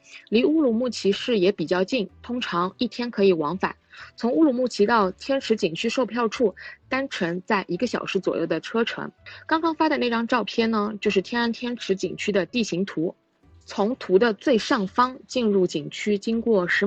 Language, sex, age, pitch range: Chinese, female, 20-39, 185-245 Hz